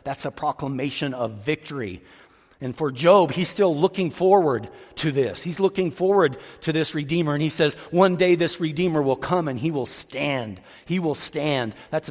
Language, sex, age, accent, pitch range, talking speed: English, male, 40-59, American, 130-180 Hz, 185 wpm